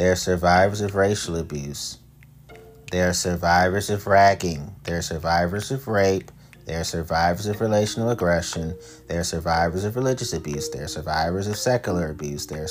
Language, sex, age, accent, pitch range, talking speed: English, male, 30-49, American, 80-110 Hz, 170 wpm